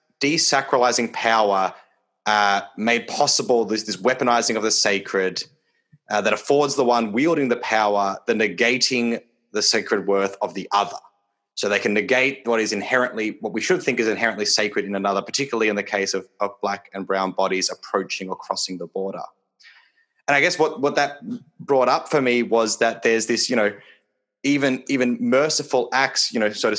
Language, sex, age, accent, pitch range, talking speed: English, male, 20-39, Australian, 105-125 Hz, 185 wpm